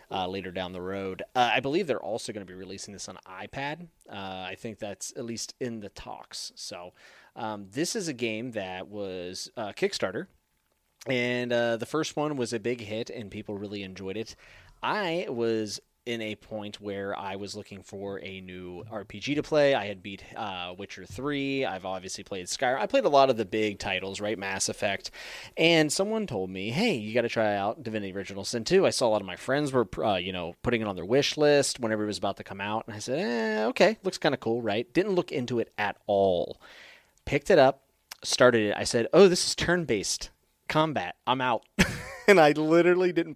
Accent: American